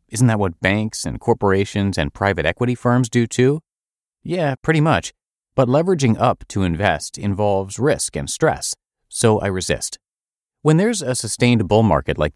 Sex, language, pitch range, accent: male, English, 90-125 Hz, American